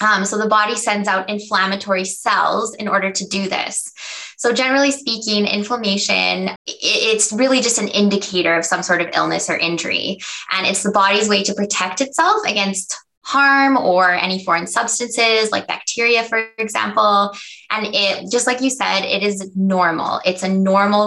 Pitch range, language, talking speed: 195-235 Hz, English, 170 wpm